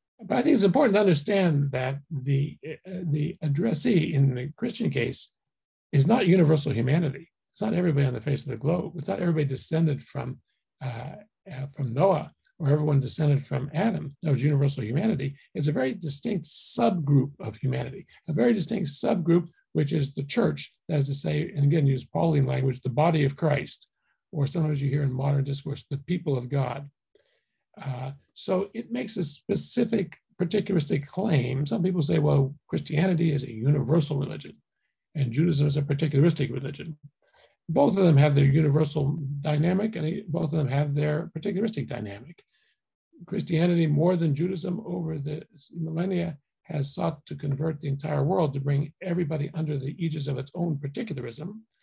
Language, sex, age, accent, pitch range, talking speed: English, male, 60-79, American, 140-175 Hz, 170 wpm